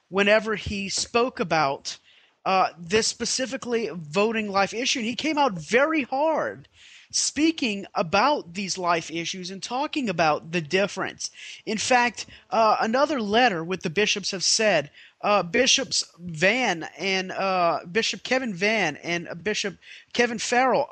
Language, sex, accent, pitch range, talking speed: English, male, American, 180-235 Hz, 140 wpm